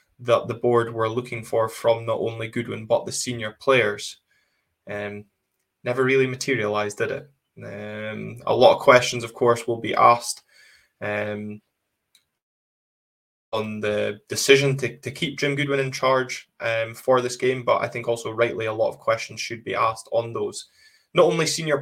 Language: English